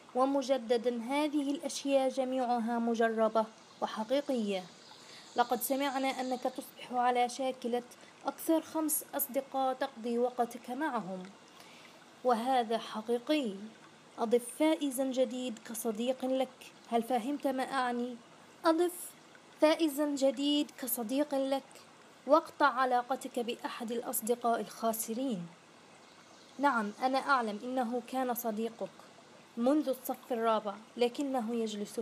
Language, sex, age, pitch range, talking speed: Arabic, female, 20-39, 235-285 Hz, 95 wpm